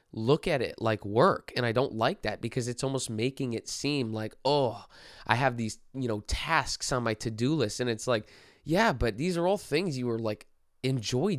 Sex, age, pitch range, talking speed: male, 20-39, 110-130 Hz, 215 wpm